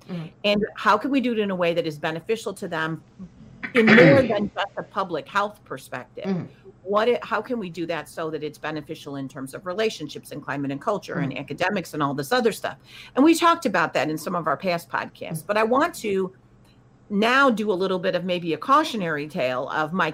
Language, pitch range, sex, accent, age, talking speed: English, 165-225 Hz, female, American, 40-59, 225 wpm